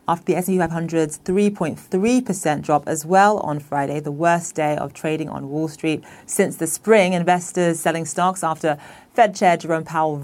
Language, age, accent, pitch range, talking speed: English, 30-49, British, 150-185 Hz, 170 wpm